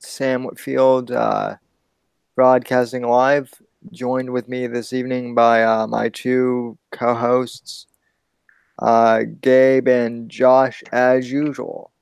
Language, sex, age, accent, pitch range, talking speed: English, male, 20-39, American, 120-135 Hz, 100 wpm